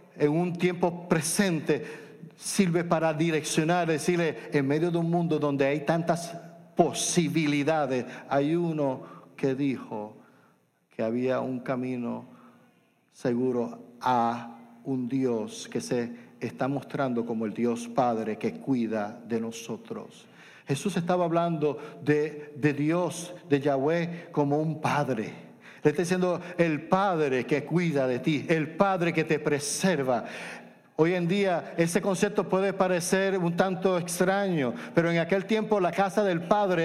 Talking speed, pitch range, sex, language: 135 wpm, 140-185 Hz, male, Spanish